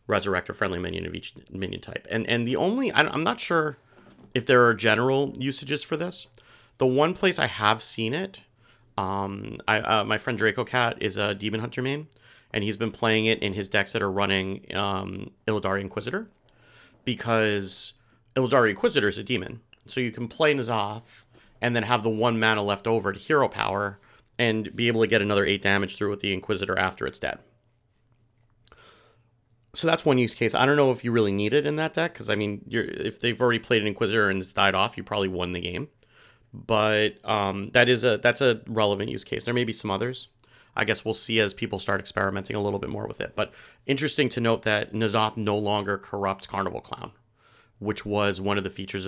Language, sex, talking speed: English, male, 210 wpm